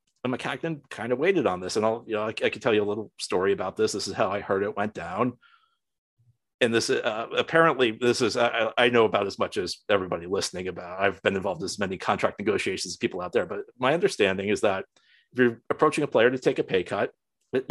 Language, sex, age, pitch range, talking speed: English, male, 40-59, 115-140 Hz, 245 wpm